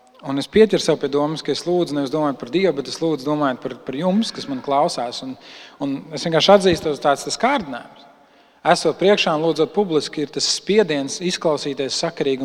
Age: 40-59